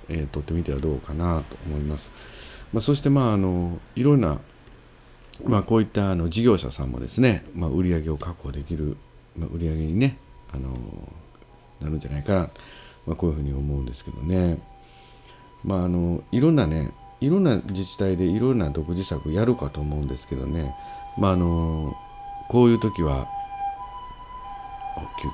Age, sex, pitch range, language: 50-69, male, 75-110 Hz, Japanese